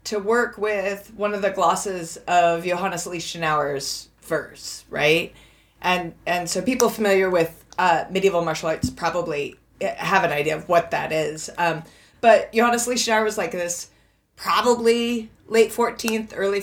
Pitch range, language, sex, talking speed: 170-220 Hz, English, female, 150 wpm